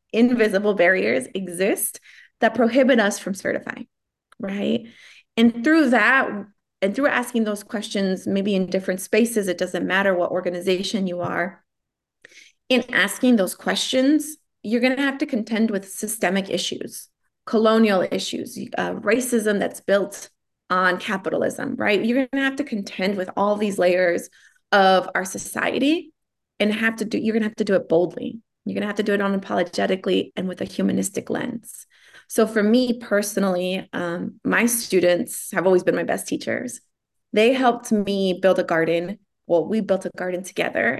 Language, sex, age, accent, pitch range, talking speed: English, female, 30-49, American, 180-230 Hz, 165 wpm